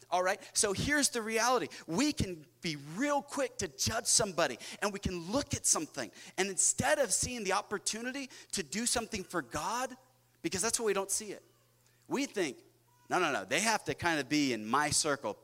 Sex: male